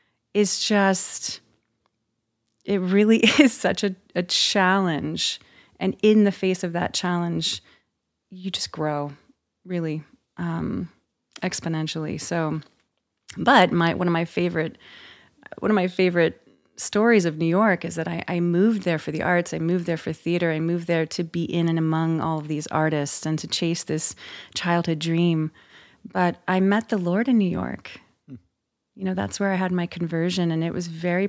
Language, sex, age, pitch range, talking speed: English, female, 30-49, 160-185 Hz, 170 wpm